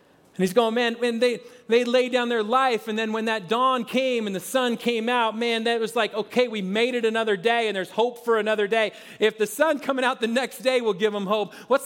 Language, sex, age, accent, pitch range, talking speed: English, male, 40-59, American, 175-225 Hz, 260 wpm